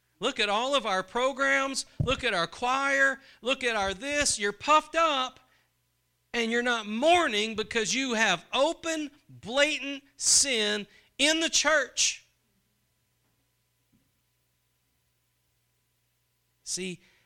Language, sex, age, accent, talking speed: English, male, 40-59, American, 110 wpm